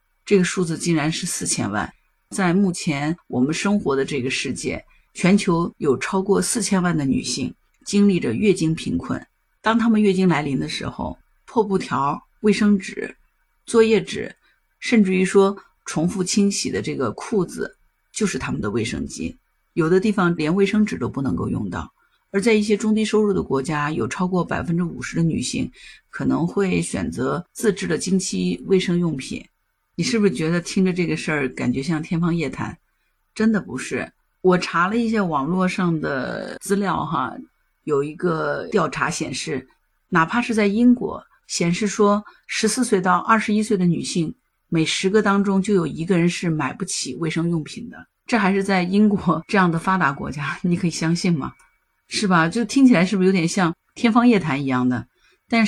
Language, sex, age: Chinese, female, 50-69